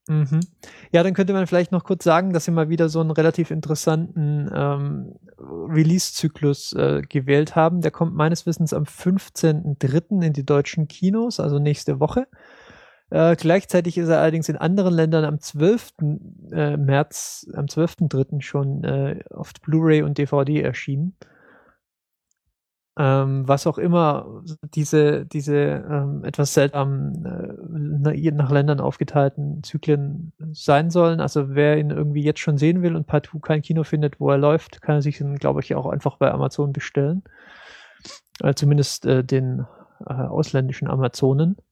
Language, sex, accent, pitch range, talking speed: German, male, German, 145-165 Hz, 150 wpm